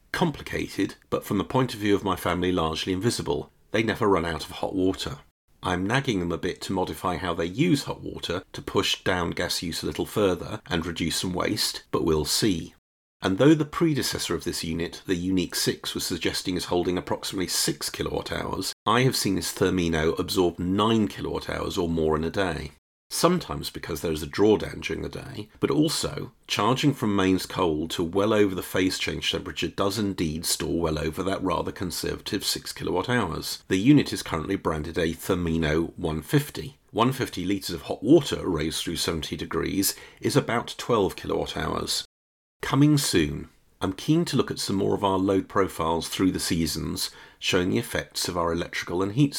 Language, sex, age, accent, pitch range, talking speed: English, male, 40-59, British, 80-105 Hz, 190 wpm